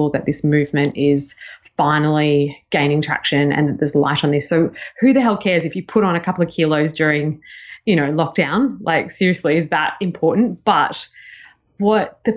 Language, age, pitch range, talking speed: English, 20-39, 150-180 Hz, 185 wpm